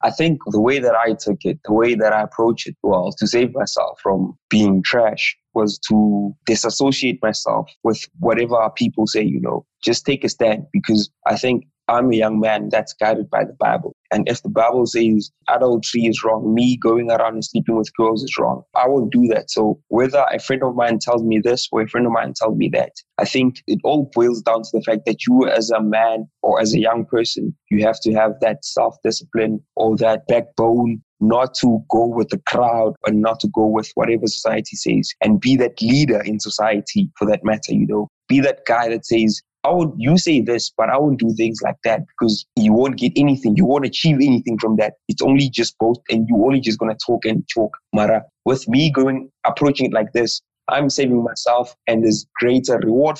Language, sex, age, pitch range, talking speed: English, male, 20-39, 110-125 Hz, 220 wpm